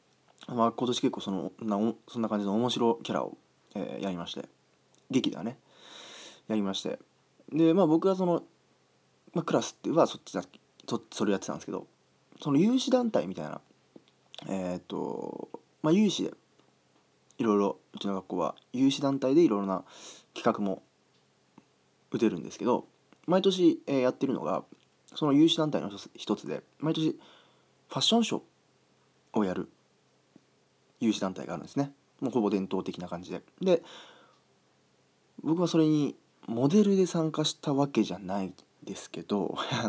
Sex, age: male, 20-39